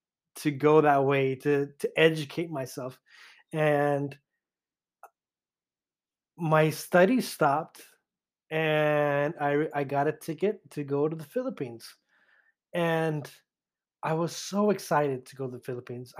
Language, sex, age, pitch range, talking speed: English, male, 20-39, 145-175 Hz, 120 wpm